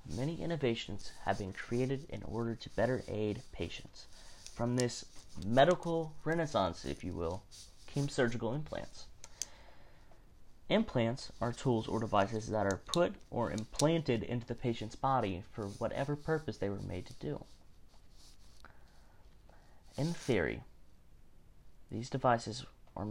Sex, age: male, 30-49